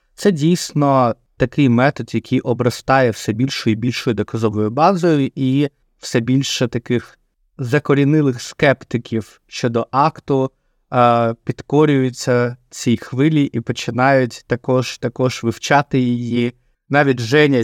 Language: Ukrainian